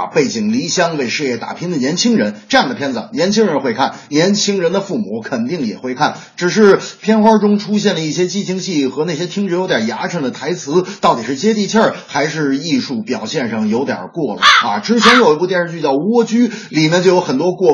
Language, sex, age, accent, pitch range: Chinese, male, 30-49, native, 175-230 Hz